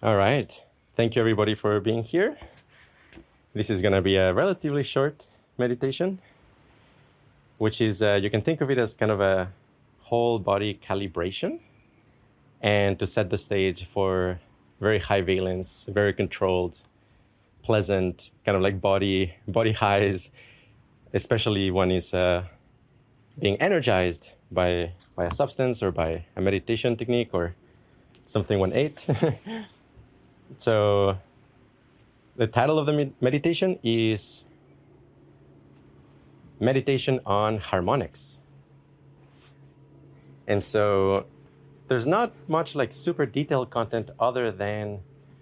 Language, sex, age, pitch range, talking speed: English, male, 30-49, 100-135 Hz, 120 wpm